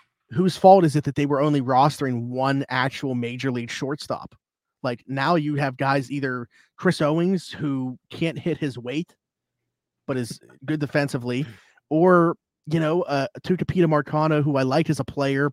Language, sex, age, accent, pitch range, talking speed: English, male, 30-49, American, 125-150 Hz, 165 wpm